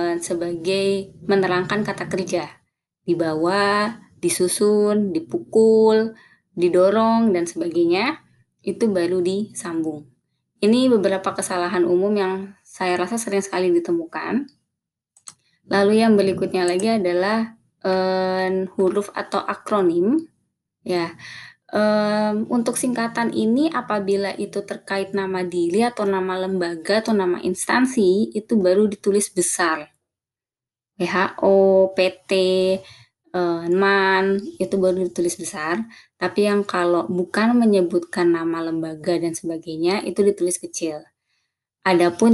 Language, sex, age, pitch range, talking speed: Indonesian, female, 20-39, 175-210 Hz, 105 wpm